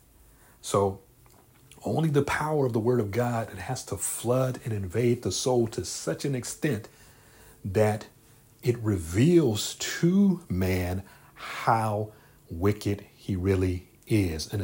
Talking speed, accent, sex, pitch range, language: 130 wpm, American, male, 95-120 Hz, English